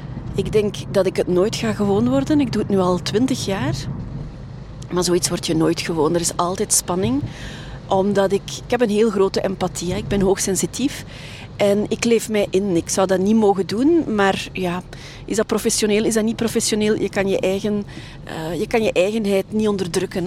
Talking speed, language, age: 200 wpm, Dutch, 40-59